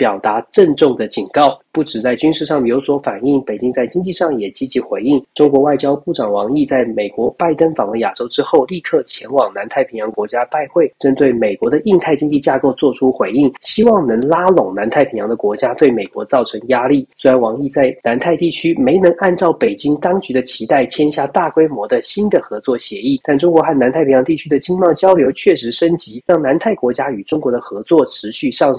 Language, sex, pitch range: Chinese, male, 125-170 Hz